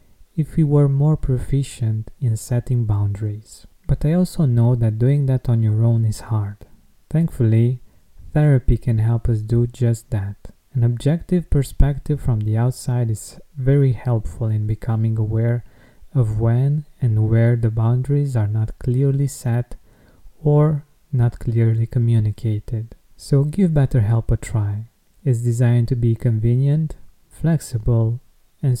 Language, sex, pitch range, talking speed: English, male, 110-135 Hz, 135 wpm